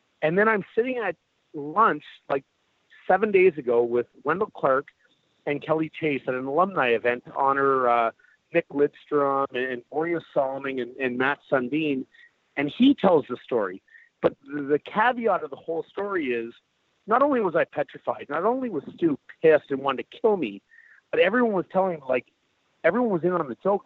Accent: American